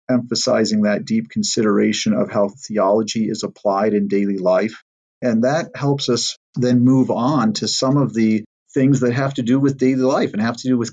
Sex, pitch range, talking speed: male, 105-130 Hz, 200 wpm